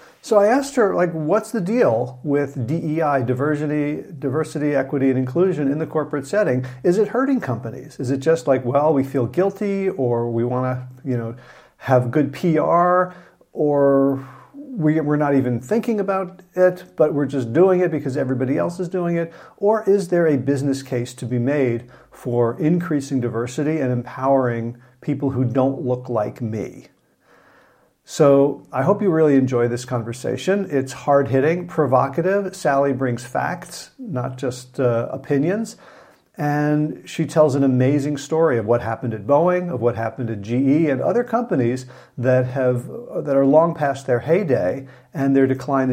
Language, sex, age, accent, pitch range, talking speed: English, male, 50-69, American, 130-175 Hz, 165 wpm